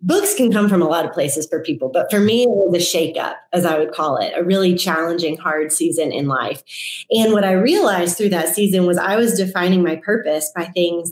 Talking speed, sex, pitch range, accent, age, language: 235 wpm, female, 165-210 Hz, American, 30-49, English